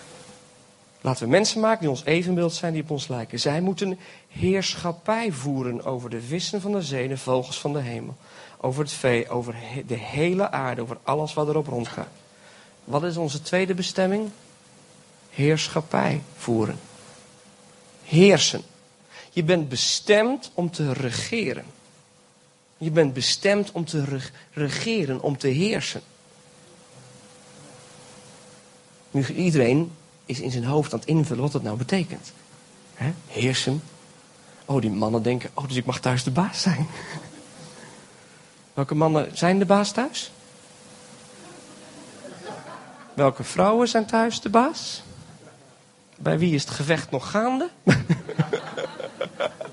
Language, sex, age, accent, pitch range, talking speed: Dutch, male, 40-59, Dutch, 135-190 Hz, 130 wpm